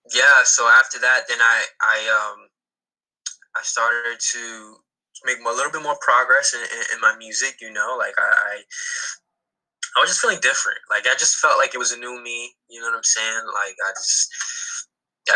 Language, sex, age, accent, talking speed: English, male, 20-39, American, 195 wpm